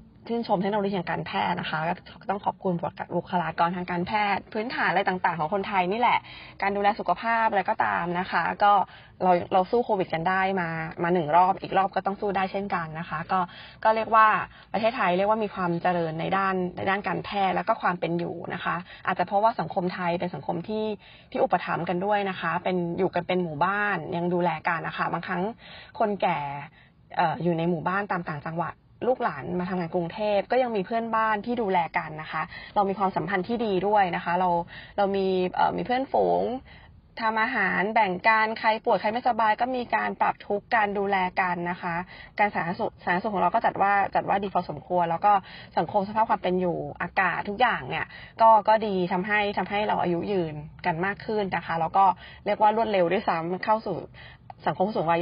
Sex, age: female, 20-39